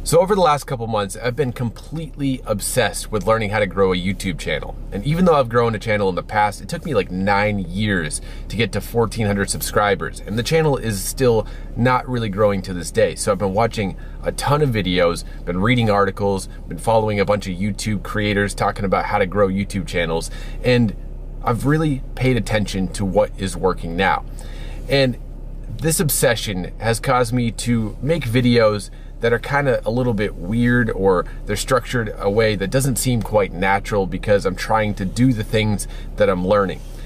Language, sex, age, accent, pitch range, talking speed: English, male, 30-49, American, 100-125 Hz, 200 wpm